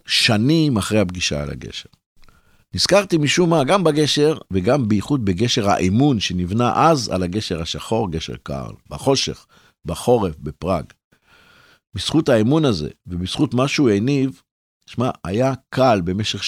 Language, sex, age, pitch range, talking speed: Hebrew, male, 50-69, 90-125 Hz, 125 wpm